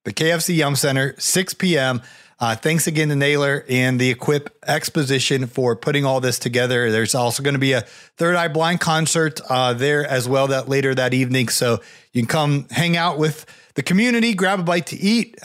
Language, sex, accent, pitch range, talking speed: English, male, American, 125-160 Hz, 200 wpm